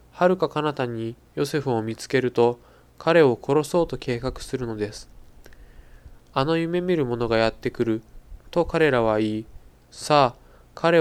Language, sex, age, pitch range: Japanese, male, 20-39, 110-150 Hz